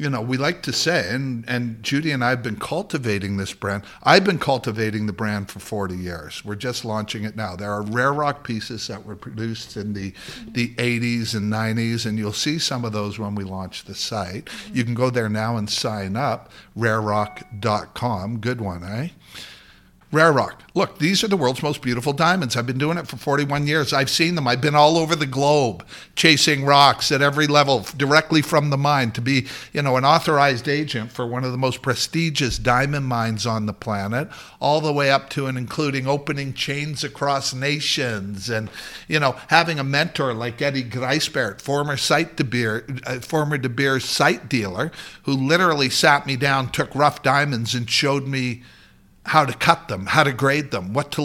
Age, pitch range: 50-69, 110-145 Hz